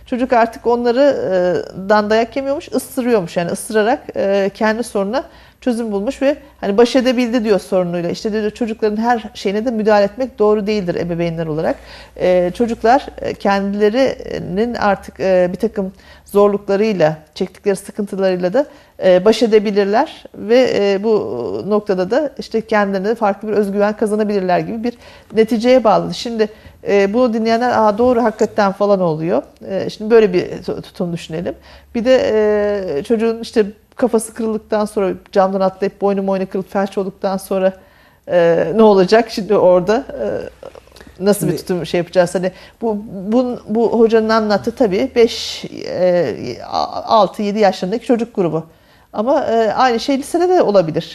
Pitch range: 195-235 Hz